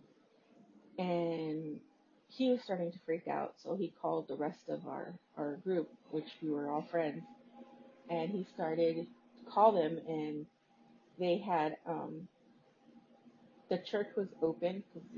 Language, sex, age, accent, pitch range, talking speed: English, female, 30-49, American, 155-195 Hz, 140 wpm